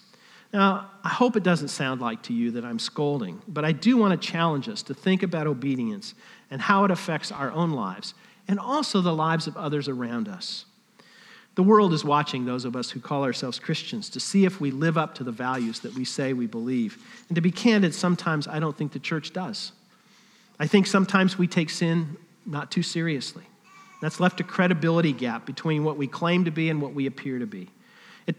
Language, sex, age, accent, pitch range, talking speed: English, male, 50-69, American, 150-205 Hz, 215 wpm